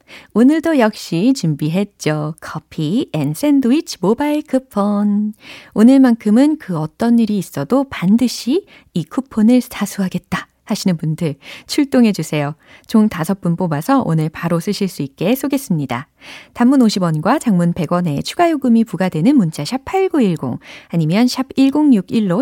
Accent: native